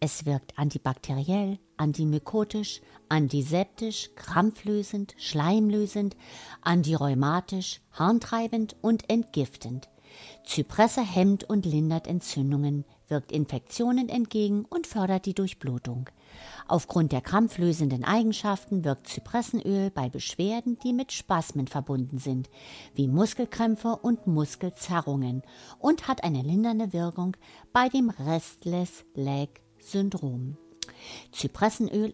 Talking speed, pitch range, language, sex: 95 wpm, 140-215 Hz, German, female